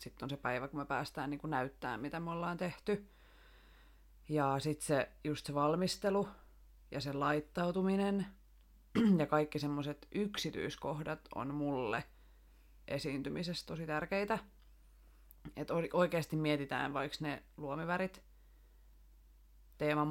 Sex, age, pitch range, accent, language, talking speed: female, 30-49, 130-155 Hz, native, Finnish, 110 wpm